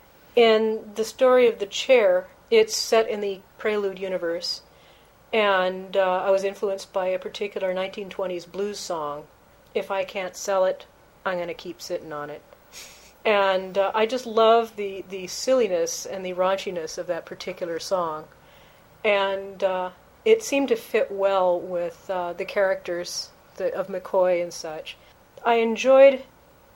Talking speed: 150 wpm